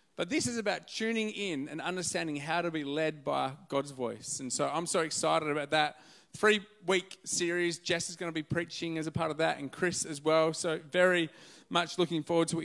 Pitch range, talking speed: 150-190 Hz, 220 wpm